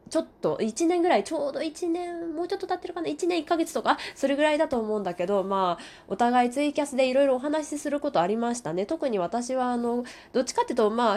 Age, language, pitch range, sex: 20-39, Japanese, 195-280 Hz, female